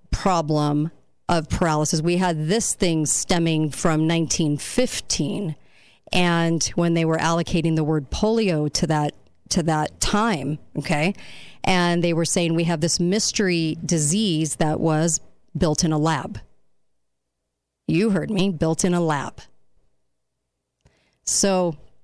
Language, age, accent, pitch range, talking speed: English, 40-59, American, 160-190 Hz, 130 wpm